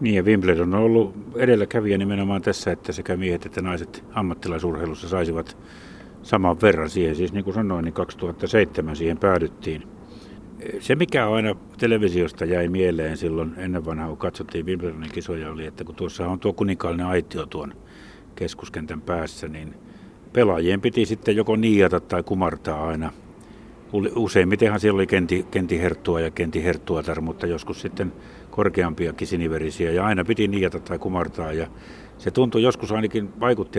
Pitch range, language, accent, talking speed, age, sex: 85-100 Hz, Finnish, native, 145 wpm, 60-79, male